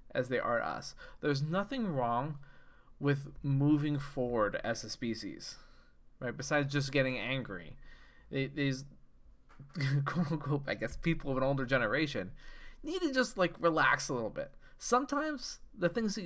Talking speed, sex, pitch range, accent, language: 150 wpm, male, 125-165 Hz, American, English